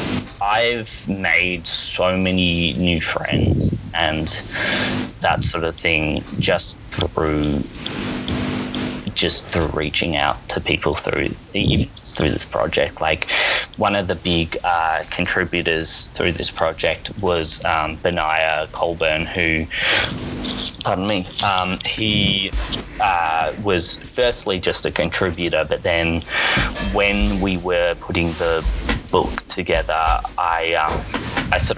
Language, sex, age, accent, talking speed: English, male, 20-39, Australian, 115 wpm